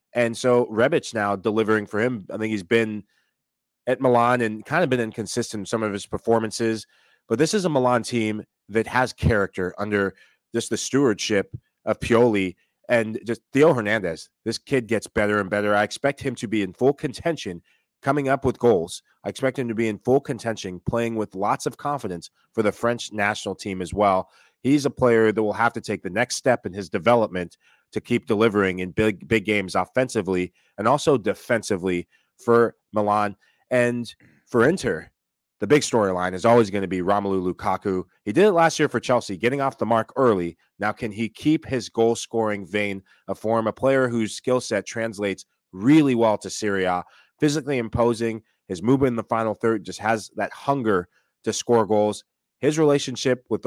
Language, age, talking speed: English, 30-49, 190 wpm